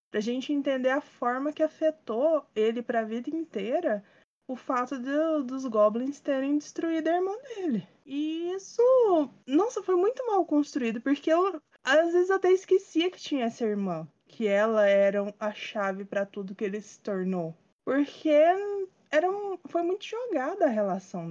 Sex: female